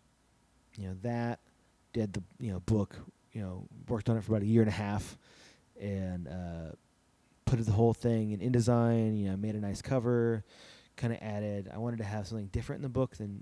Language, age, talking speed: English, 30-49, 210 wpm